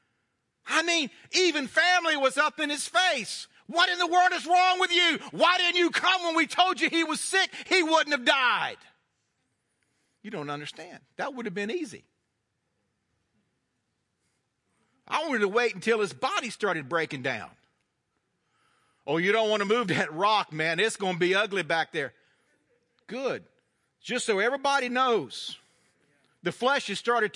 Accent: American